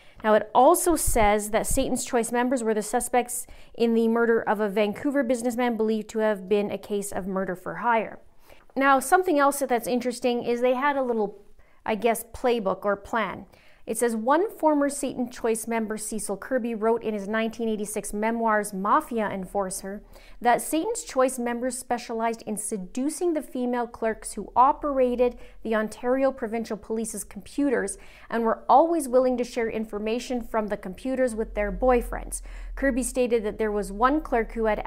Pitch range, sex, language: 215-255 Hz, female, English